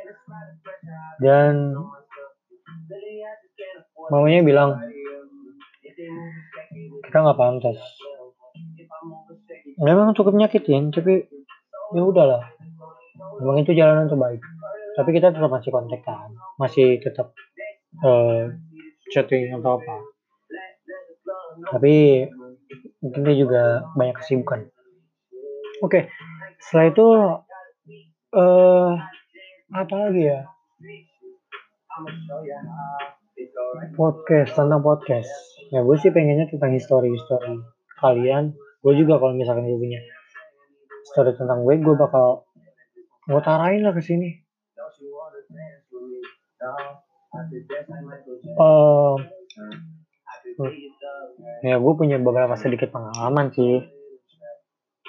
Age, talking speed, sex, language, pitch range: 30-49, 80 wpm, male, Indonesian, 135-185 Hz